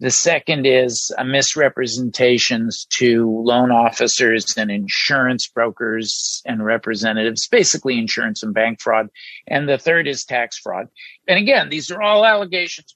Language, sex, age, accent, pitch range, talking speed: English, male, 50-69, American, 120-155 Hz, 135 wpm